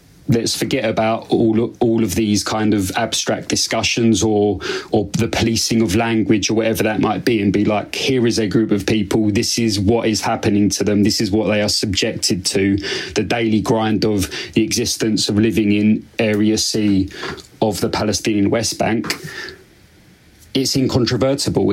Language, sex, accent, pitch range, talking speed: English, male, British, 105-115 Hz, 175 wpm